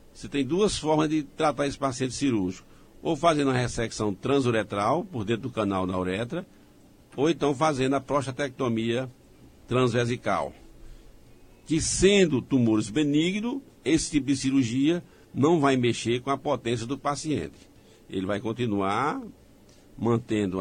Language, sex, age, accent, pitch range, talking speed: Portuguese, male, 60-79, Brazilian, 110-140 Hz, 135 wpm